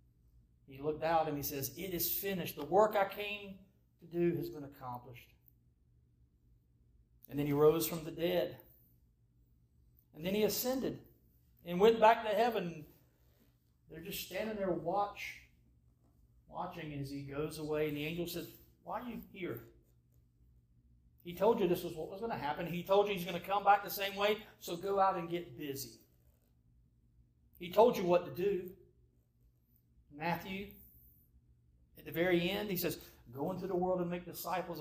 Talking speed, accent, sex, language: 170 wpm, American, male, English